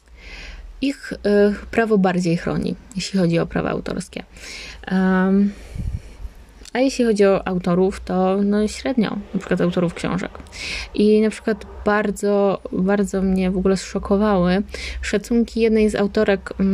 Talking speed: 130 wpm